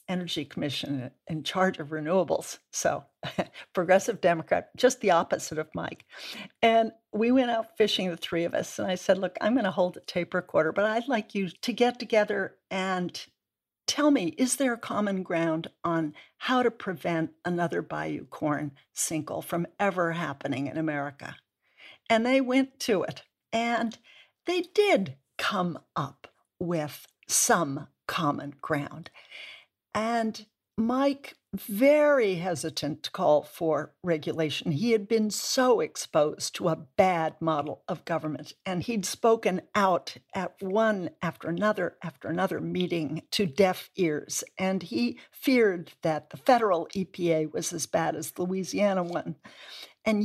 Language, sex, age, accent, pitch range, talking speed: English, female, 60-79, American, 165-225 Hz, 150 wpm